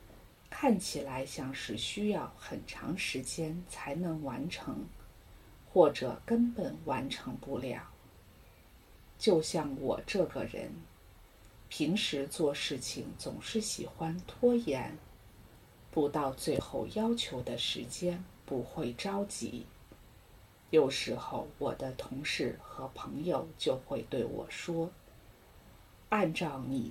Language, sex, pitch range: English, female, 130-200 Hz